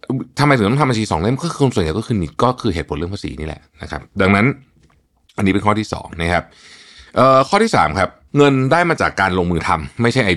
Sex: male